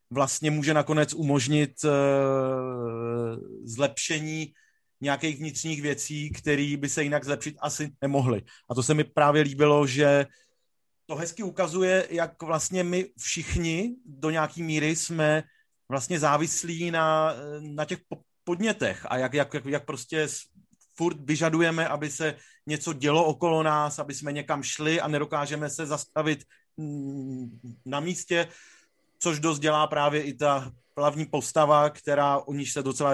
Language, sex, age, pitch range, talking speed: Czech, male, 30-49, 140-160 Hz, 135 wpm